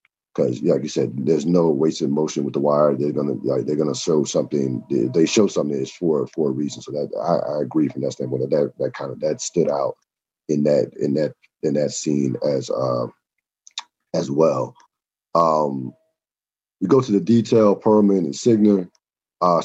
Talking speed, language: 210 wpm, English